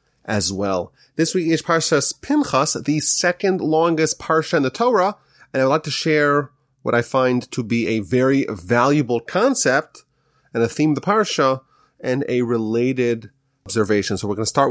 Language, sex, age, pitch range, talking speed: English, male, 30-49, 120-160 Hz, 180 wpm